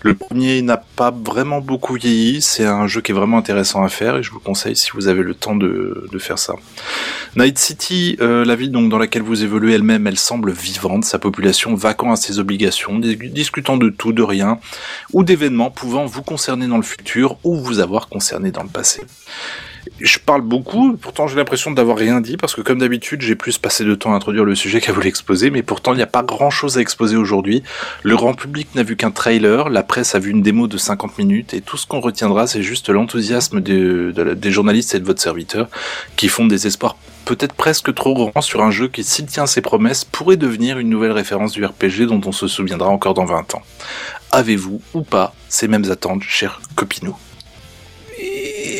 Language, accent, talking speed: French, French, 215 wpm